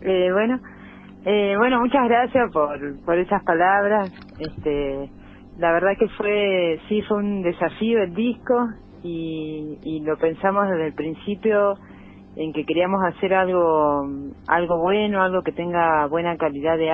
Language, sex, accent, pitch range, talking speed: Spanish, female, Argentinian, 150-190 Hz, 145 wpm